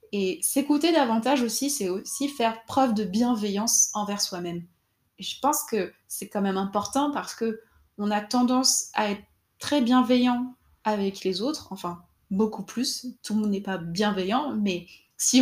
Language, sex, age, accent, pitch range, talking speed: French, female, 20-39, French, 190-250 Hz, 165 wpm